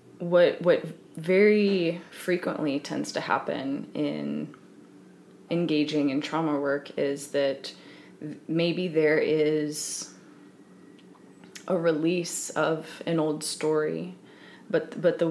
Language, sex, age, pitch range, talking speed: English, female, 20-39, 145-165 Hz, 100 wpm